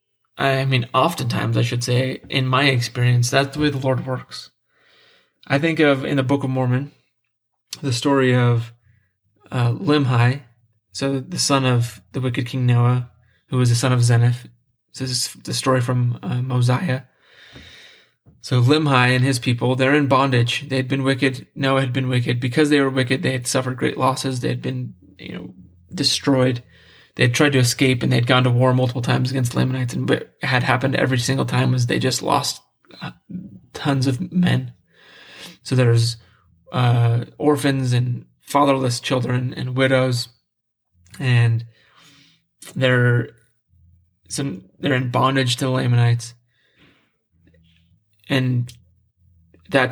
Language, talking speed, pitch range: English, 155 wpm, 120-135 Hz